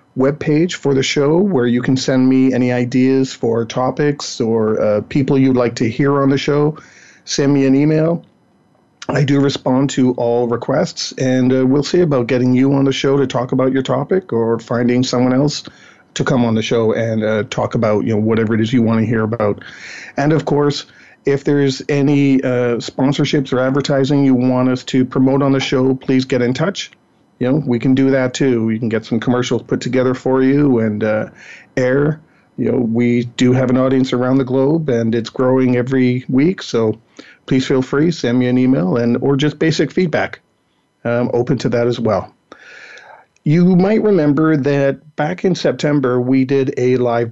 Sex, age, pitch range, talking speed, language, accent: male, 40-59, 120-140 Hz, 200 wpm, English, American